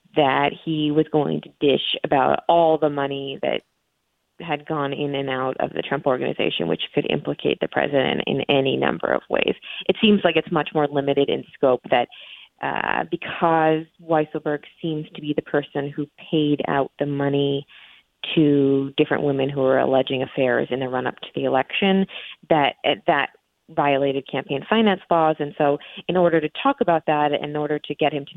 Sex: female